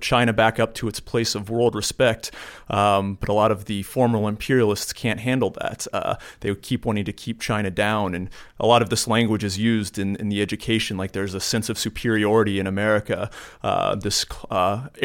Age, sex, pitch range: 30-49, male, 105-120 Hz